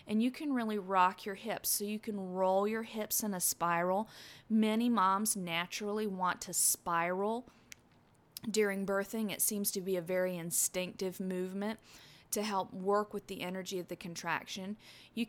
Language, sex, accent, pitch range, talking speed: English, female, American, 180-220 Hz, 165 wpm